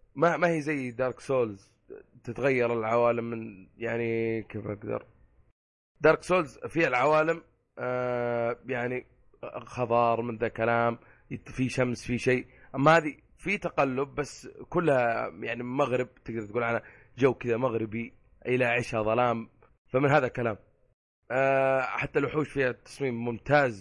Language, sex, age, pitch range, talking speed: Arabic, male, 20-39, 115-140 Hz, 125 wpm